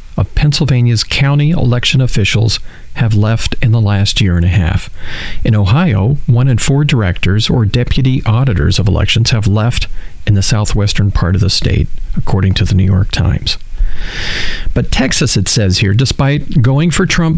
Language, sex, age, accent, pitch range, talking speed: English, male, 40-59, American, 100-130 Hz, 170 wpm